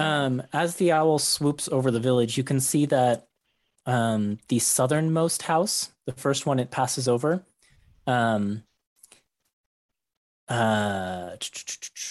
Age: 30-49